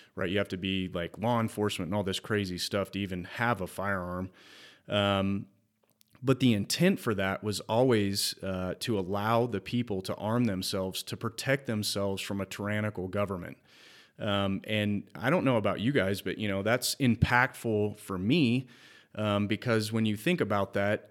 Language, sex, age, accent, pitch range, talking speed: English, male, 30-49, American, 100-115 Hz, 180 wpm